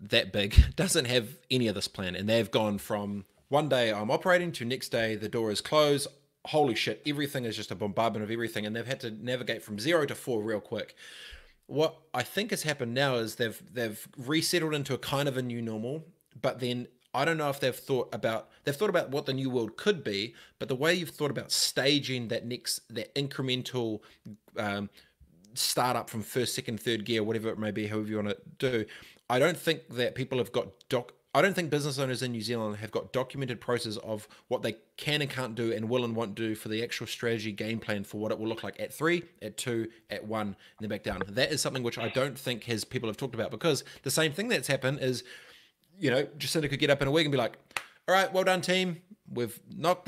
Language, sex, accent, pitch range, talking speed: English, male, Australian, 110-150 Hz, 235 wpm